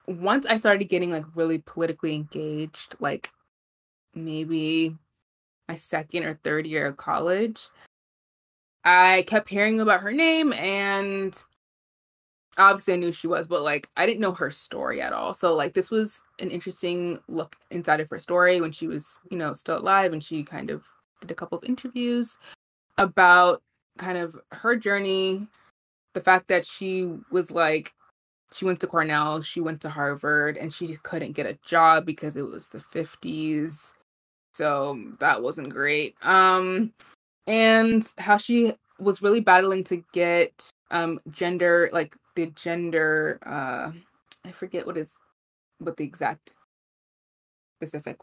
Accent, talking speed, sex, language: American, 155 wpm, female, English